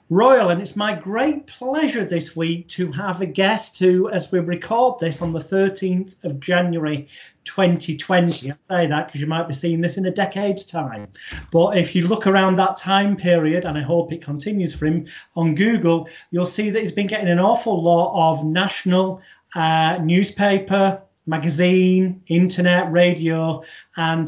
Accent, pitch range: British, 165-195 Hz